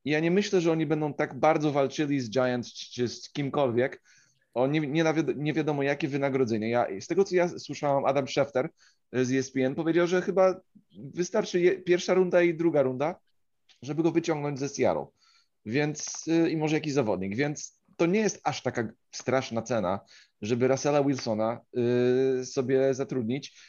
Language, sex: Polish, male